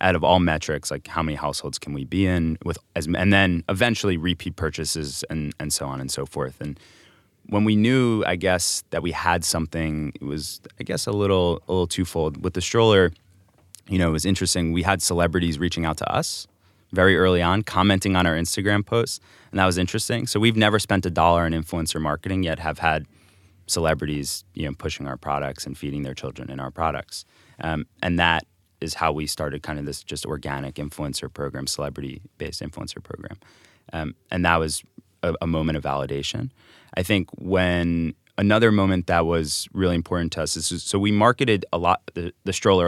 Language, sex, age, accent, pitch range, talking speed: English, male, 20-39, American, 80-100 Hz, 200 wpm